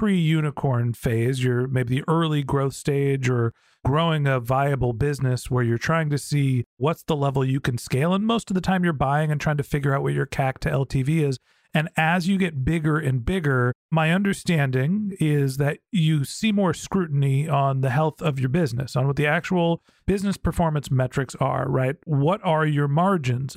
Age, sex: 40-59, male